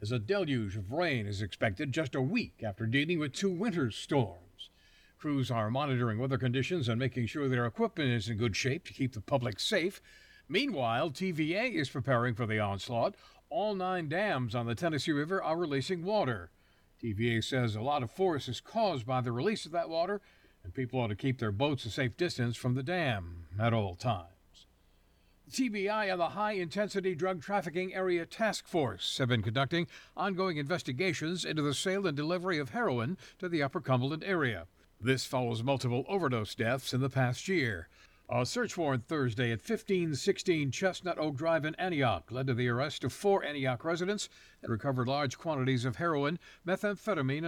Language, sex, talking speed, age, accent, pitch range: English, male, 180 wpm, 60-79, American, 120-180 Hz